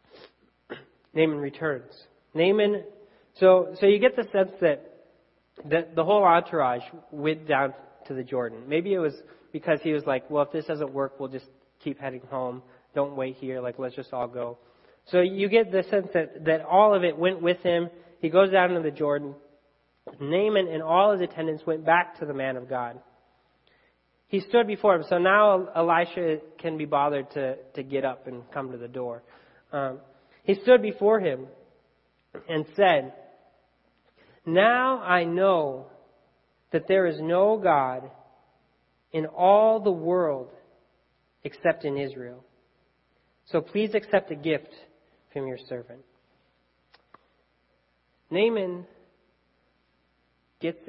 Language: English